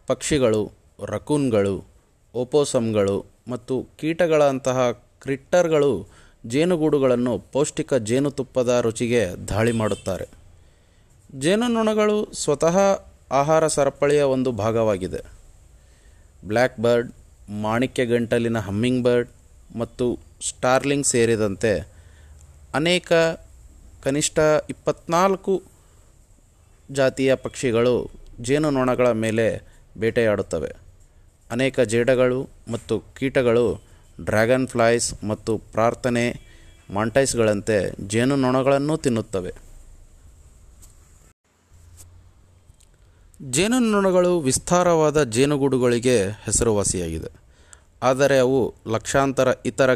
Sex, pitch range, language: male, 100-135 Hz, Kannada